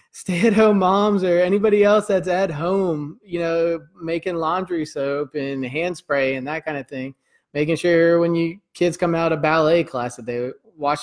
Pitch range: 155-190 Hz